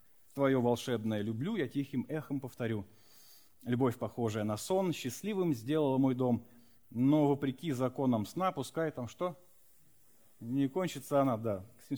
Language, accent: Russian, native